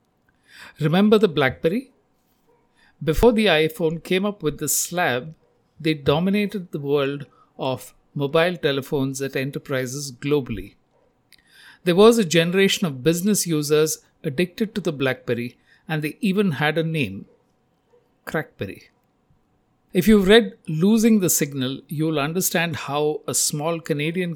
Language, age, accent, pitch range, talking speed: English, 60-79, Indian, 135-180 Hz, 125 wpm